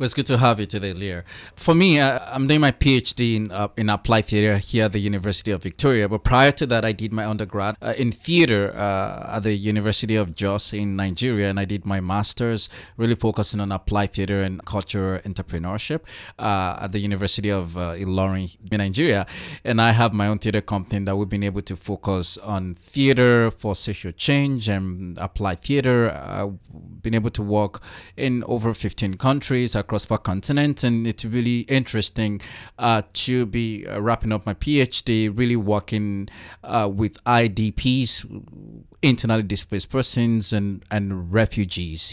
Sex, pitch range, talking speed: male, 100-120 Hz, 175 wpm